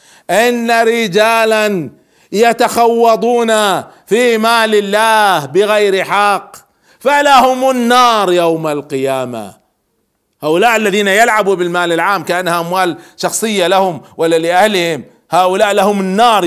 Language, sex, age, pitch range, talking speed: Arabic, male, 50-69, 160-230 Hz, 95 wpm